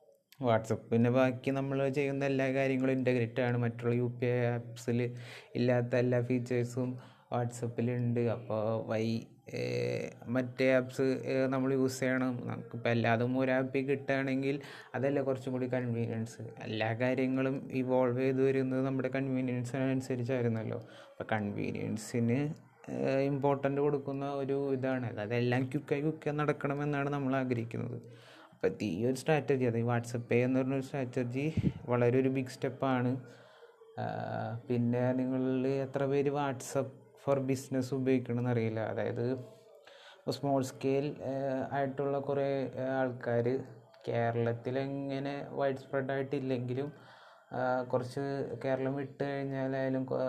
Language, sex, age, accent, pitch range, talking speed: Malayalam, male, 20-39, native, 120-135 Hz, 100 wpm